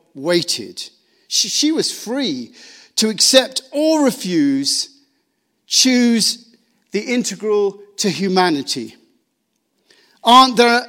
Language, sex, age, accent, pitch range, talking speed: English, male, 50-69, British, 165-235 Hz, 90 wpm